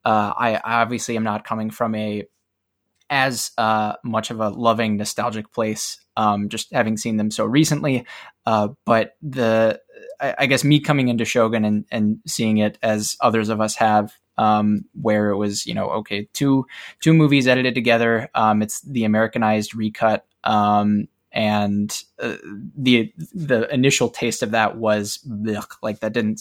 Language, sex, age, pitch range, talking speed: English, male, 20-39, 105-125 Hz, 170 wpm